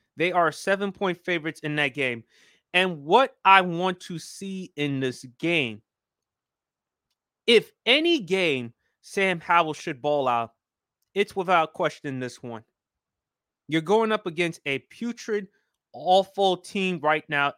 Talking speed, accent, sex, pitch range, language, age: 135 wpm, American, male, 155-205 Hz, English, 30-49